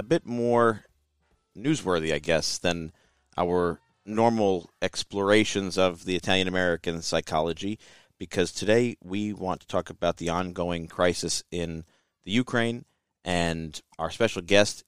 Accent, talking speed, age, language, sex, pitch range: American, 125 wpm, 40-59, English, male, 85-100 Hz